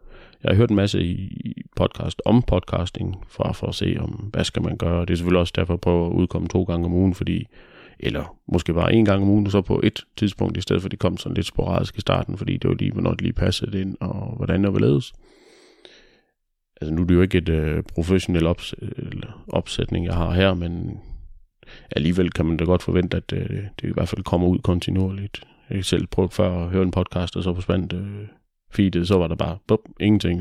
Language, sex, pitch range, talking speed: Danish, male, 90-100 Hz, 235 wpm